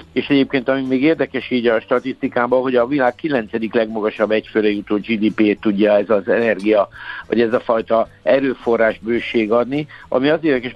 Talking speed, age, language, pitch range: 165 wpm, 60-79, Hungarian, 110-130 Hz